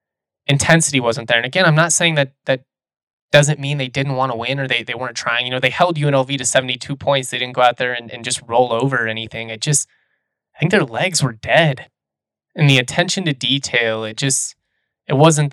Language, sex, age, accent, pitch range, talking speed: English, male, 20-39, American, 120-145 Hz, 230 wpm